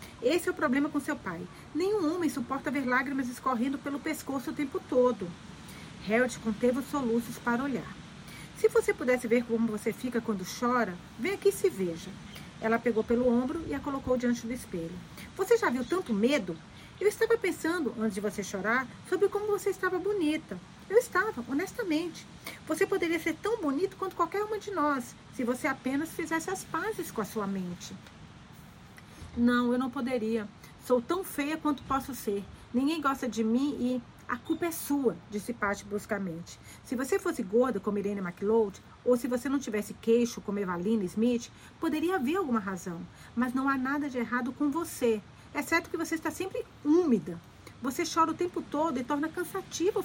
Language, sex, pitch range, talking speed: Portuguese, female, 225-330 Hz, 180 wpm